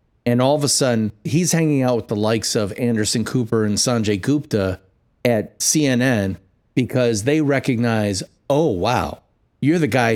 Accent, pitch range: American, 110-135 Hz